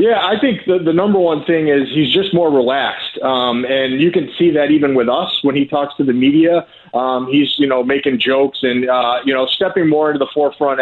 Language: English